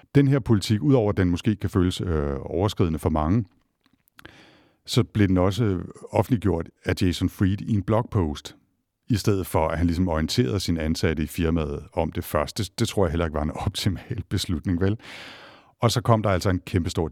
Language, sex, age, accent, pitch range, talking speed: Danish, male, 60-79, native, 80-105 Hz, 185 wpm